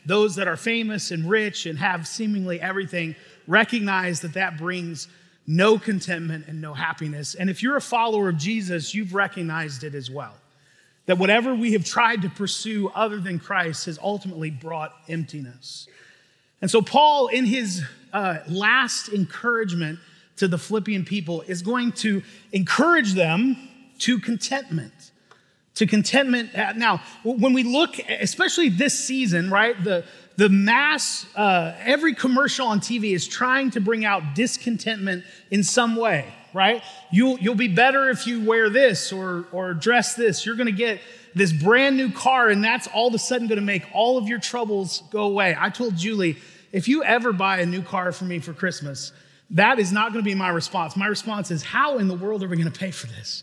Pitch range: 175-230 Hz